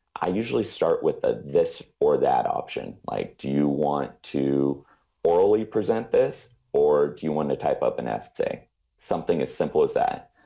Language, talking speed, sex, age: English, 180 wpm, male, 30-49